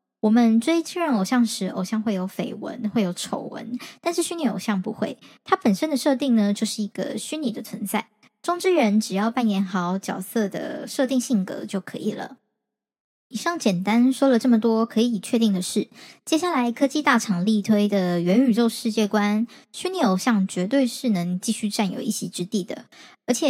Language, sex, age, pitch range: Chinese, male, 10-29, 205-255 Hz